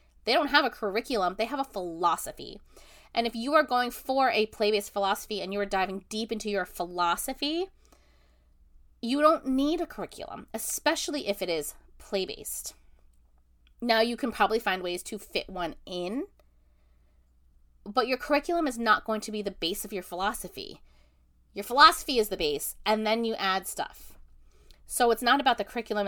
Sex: female